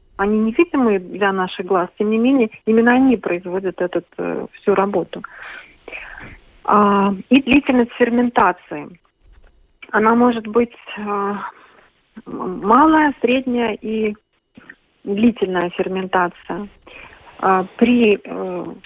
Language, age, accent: Russian, 40-59, native